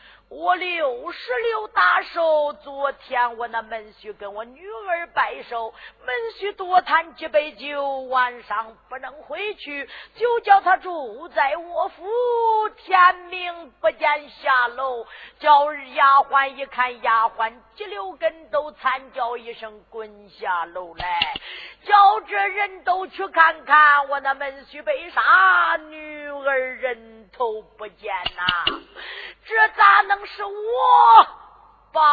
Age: 50-69